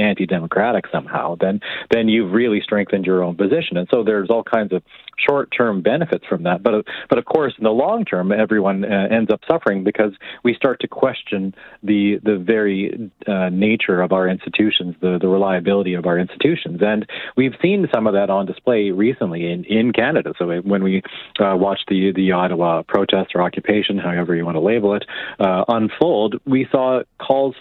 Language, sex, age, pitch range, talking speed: English, male, 40-59, 95-110 Hz, 185 wpm